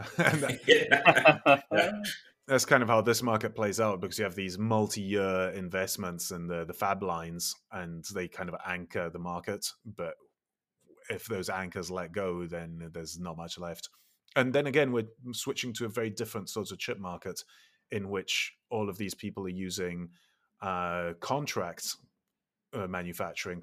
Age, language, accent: 30-49, English, British